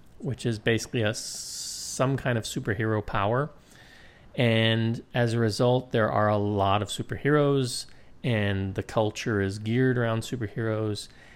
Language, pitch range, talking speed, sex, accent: English, 100-125 Hz, 135 wpm, male, American